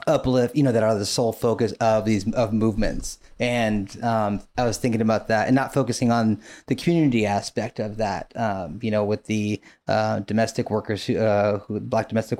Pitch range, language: 110-125 Hz, English